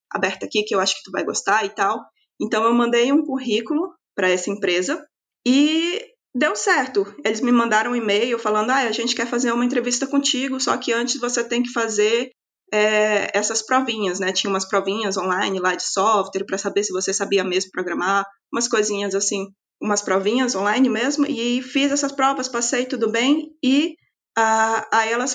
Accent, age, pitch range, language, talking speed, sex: Brazilian, 20-39, 205-265 Hz, Portuguese, 185 wpm, female